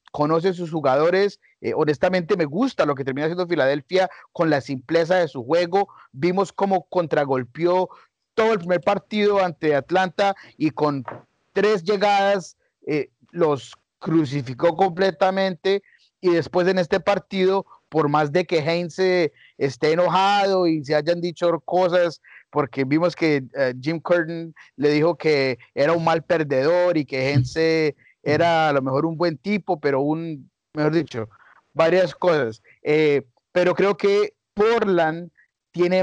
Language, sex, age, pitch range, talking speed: Spanish, male, 30-49, 150-190 Hz, 145 wpm